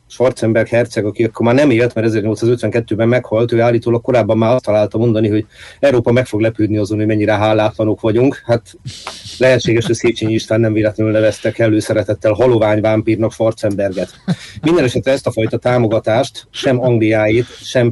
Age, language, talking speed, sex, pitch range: 30-49, Hungarian, 155 wpm, male, 110-120 Hz